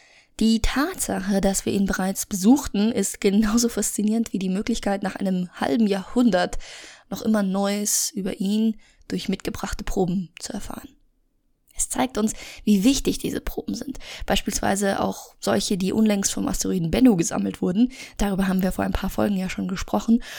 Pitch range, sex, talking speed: 185-230 Hz, female, 160 wpm